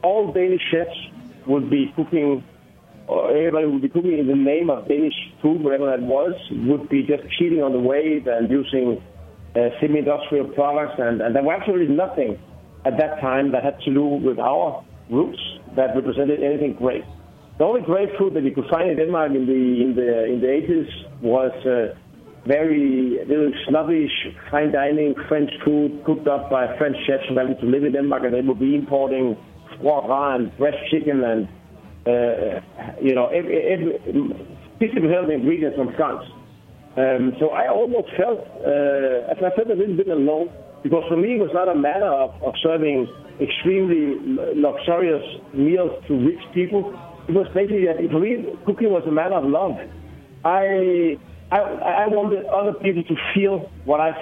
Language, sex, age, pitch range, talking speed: English, male, 60-79, 135-170 Hz, 175 wpm